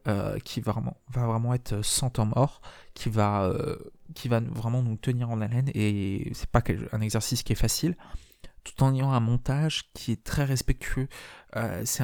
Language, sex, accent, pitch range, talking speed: French, male, French, 110-130 Hz, 195 wpm